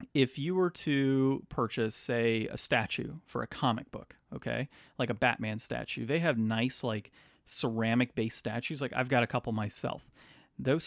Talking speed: 165 wpm